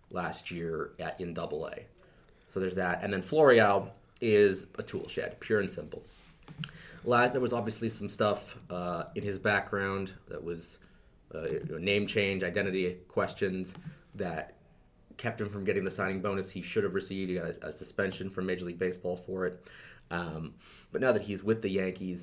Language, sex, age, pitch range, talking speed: English, male, 30-49, 90-110 Hz, 185 wpm